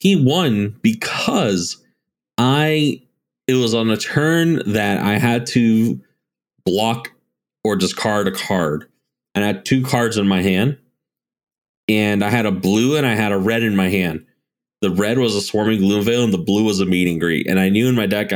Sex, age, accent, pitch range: male, 30-49, American, 95-115 Hz